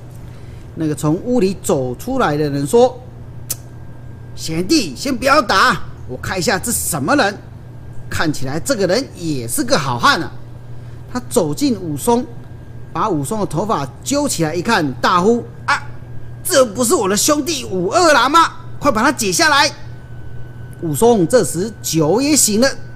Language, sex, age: Chinese, male, 40-59